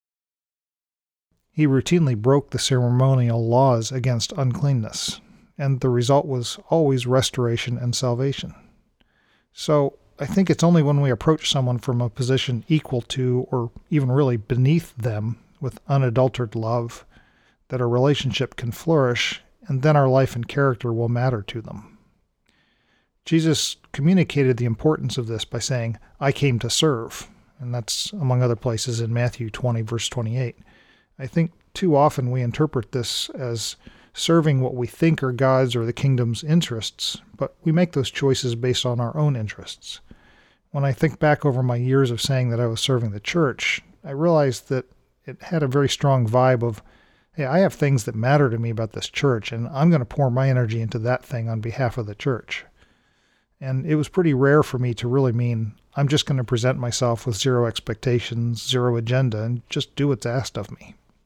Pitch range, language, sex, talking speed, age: 120-140 Hz, English, male, 180 wpm, 40-59